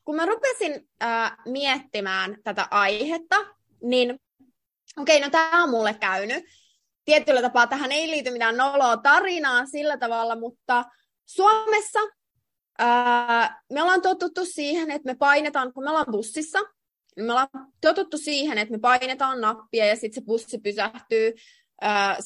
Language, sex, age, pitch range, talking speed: Finnish, female, 20-39, 230-330 Hz, 145 wpm